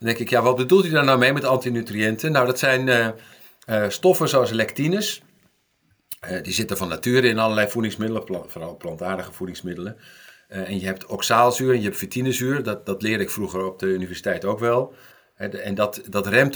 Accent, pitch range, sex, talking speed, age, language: Dutch, 100-120 Hz, male, 195 wpm, 50-69, Dutch